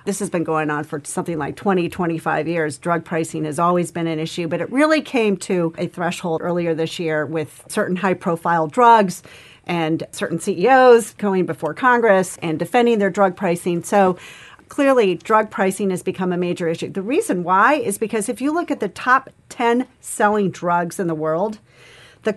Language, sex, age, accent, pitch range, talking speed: English, female, 40-59, American, 170-235 Hz, 190 wpm